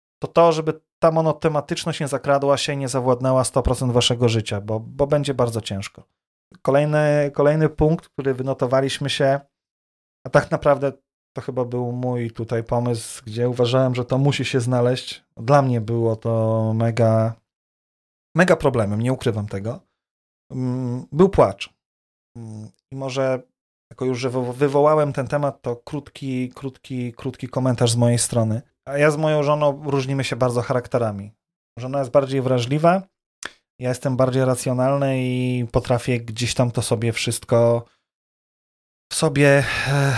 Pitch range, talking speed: 120-145 Hz, 140 wpm